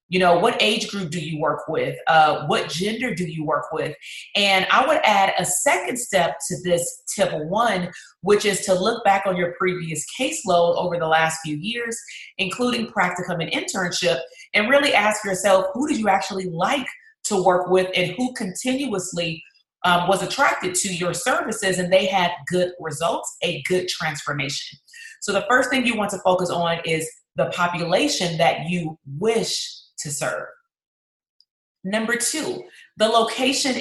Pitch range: 170-220 Hz